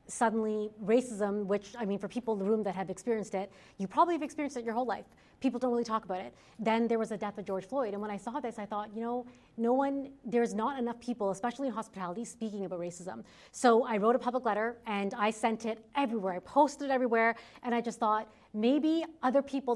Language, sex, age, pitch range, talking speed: English, female, 30-49, 205-250 Hz, 240 wpm